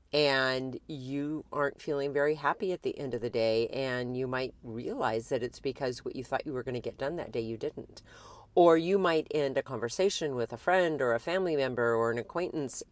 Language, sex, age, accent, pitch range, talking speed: English, female, 40-59, American, 115-145 Hz, 225 wpm